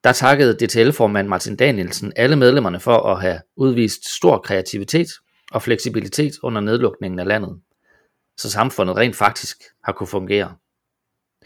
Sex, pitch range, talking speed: male, 100-130 Hz, 140 wpm